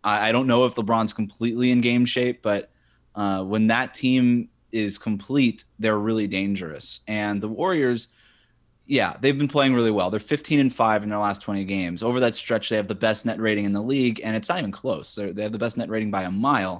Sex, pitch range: male, 105-120 Hz